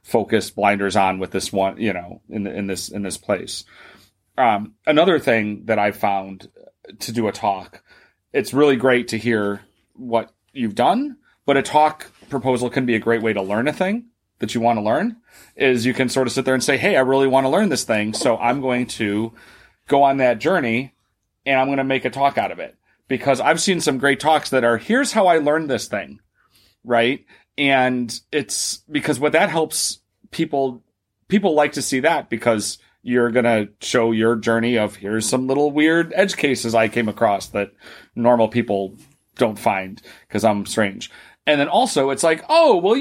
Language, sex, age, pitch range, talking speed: English, male, 30-49, 110-140 Hz, 200 wpm